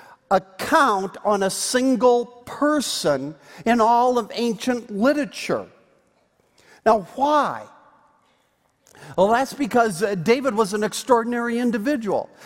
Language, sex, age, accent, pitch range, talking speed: English, male, 50-69, American, 195-240 Hz, 95 wpm